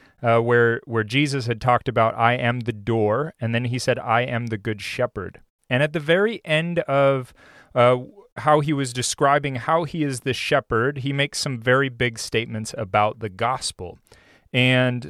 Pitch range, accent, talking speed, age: 110-140 Hz, American, 185 wpm, 30-49